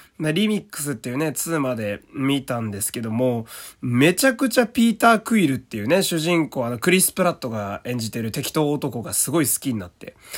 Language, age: Japanese, 20-39